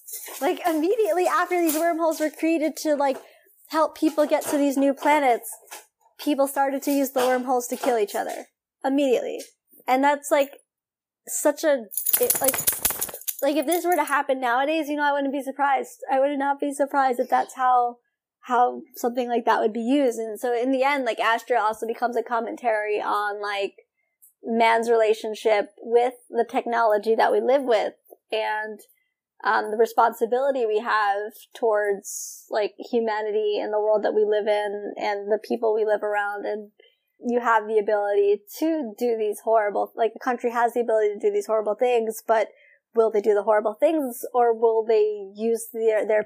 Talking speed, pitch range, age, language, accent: 180 wpm, 220-285 Hz, 10-29, English, American